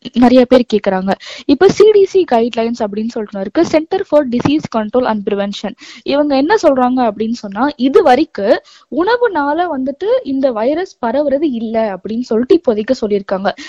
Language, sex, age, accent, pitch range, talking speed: Tamil, female, 20-39, native, 235-315 Hz, 130 wpm